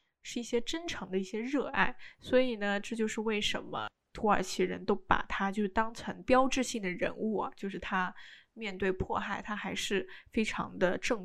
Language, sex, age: Chinese, female, 10-29